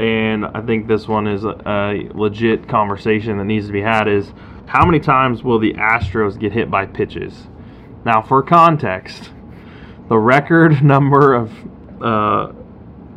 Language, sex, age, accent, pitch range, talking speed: English, male, 20-39, American, 105-135 Hz, 150 wpm